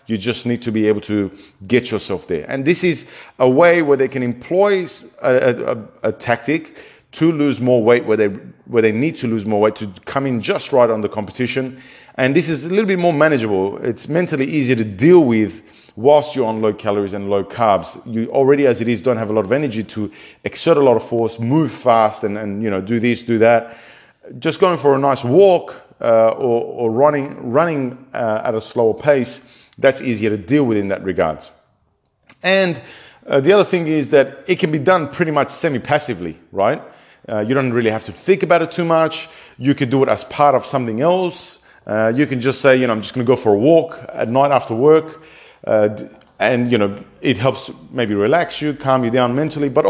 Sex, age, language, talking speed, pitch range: male, 30-49, English, 220 wpm, 110-150 Hz